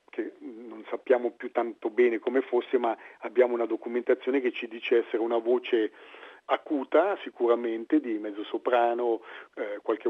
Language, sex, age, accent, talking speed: Italian, male, 40-59, native, 150 wpm